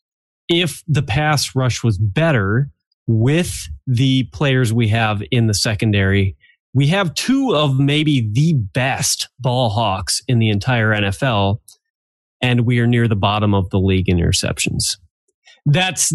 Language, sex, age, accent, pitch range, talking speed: English, male, 30-49, American, 105-140 Hz, 145 wpm